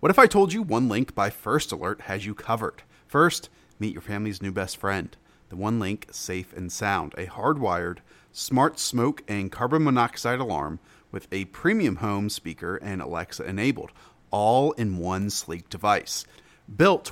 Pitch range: 100-125 Hz